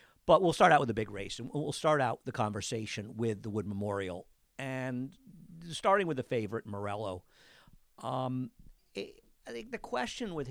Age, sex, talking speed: 50-69, male, 175 wpm